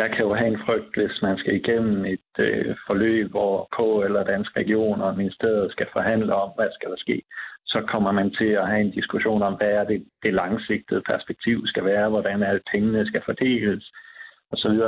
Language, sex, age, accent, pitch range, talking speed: Danish, male, 60-79, native, 100-110 Hz, 200 wpm